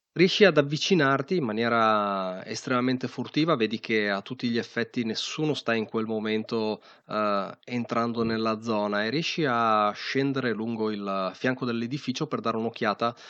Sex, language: male, Italian